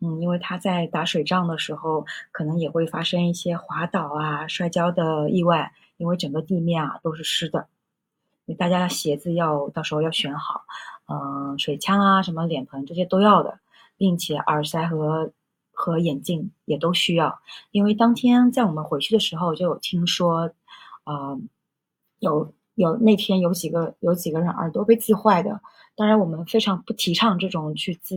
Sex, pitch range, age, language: female, 155-190 Hz, 20-39, Chinese